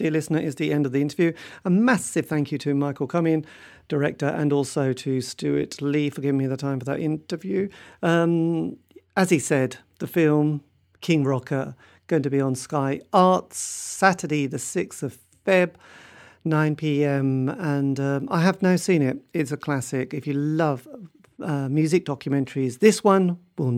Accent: British